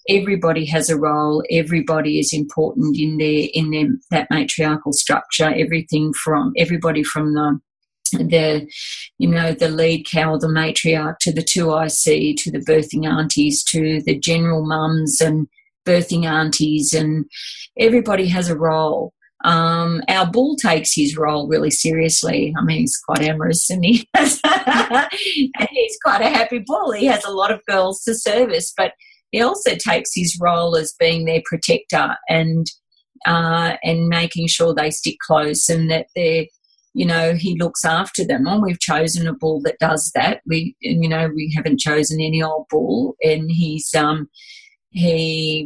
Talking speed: 165 wpm